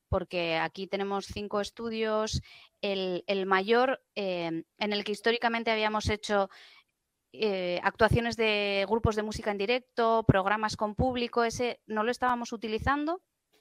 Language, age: Spanish, 20-39